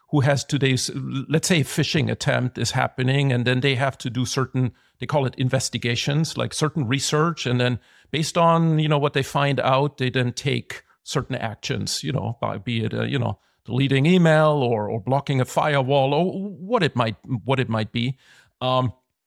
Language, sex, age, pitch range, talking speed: English, male, 50-69, 125-155 Hz, 185 wpm